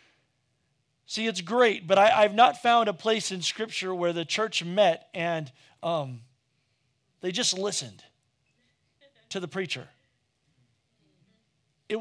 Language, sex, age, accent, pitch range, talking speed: English, male, 40-59, American, 140-200 Hz, 120 wpm